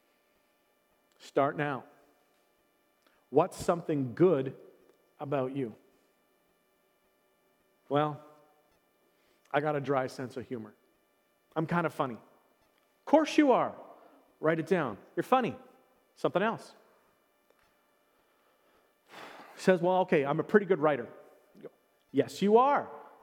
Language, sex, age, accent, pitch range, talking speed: English, male, 40-59, American, 150-230 Hz, 110 wpm